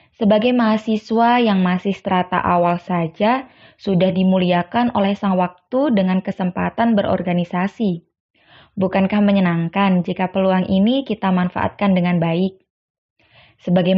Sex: female